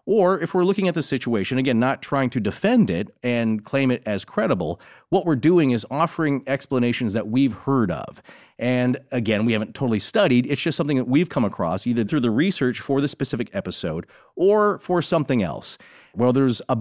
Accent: American